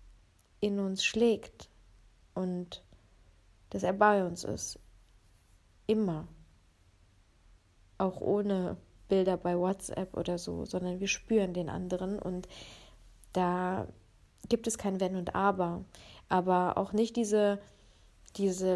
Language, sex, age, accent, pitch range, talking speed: German, female, 20-39, German, 180-230 Hz, 110 wpm